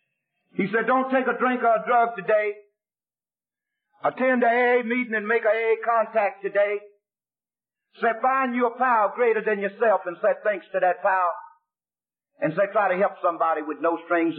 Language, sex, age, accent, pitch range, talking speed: English, male, 50-69, American, 185-260 Hz, 180 wpm